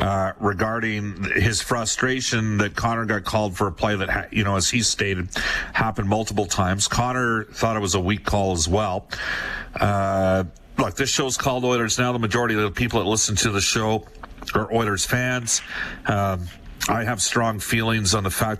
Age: 50-69